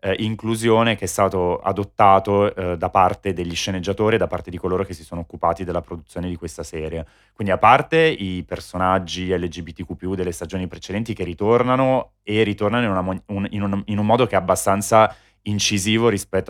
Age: 30-49